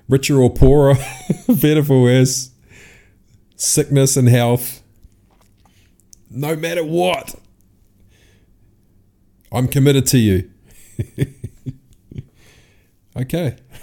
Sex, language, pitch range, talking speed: male, English, 95-120 Hz, 75 wpm